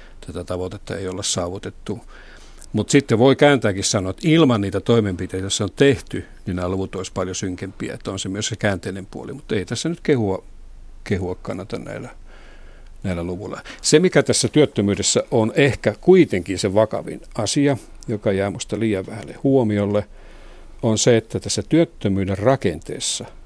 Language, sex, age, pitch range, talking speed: Finnish, male, 60-79, 95-120 Hz, 160 wpm